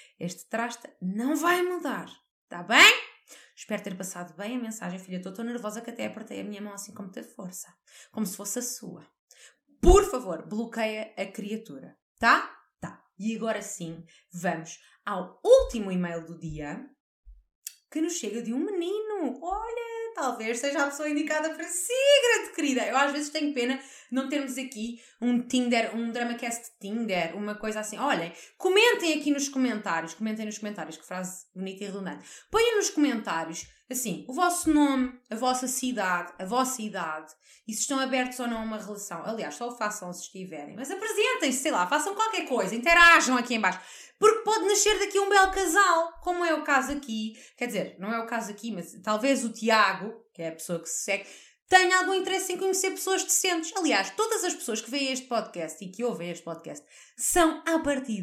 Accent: Brazilian